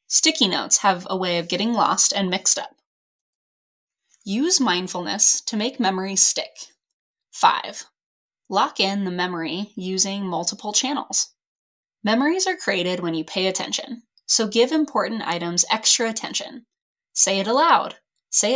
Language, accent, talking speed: English, American, 135 wpm